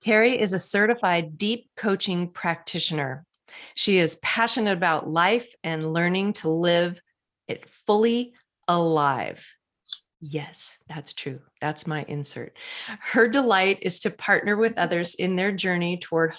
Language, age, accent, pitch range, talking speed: English, 40-59, American, 160-200 Hz, 130 wpm